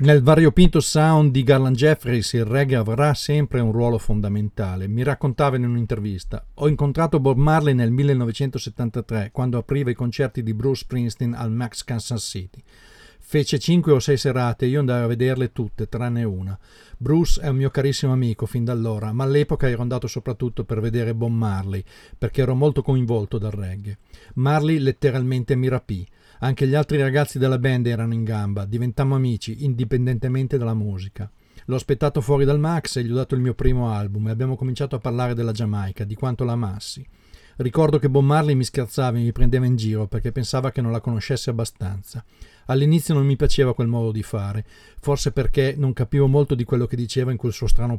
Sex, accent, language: male, native, Italian